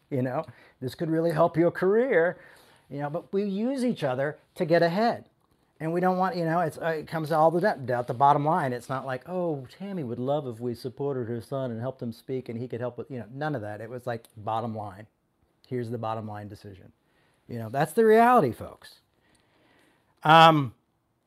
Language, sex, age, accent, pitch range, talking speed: English, male, 40-59, American, 120-160 Hz, 215 wpm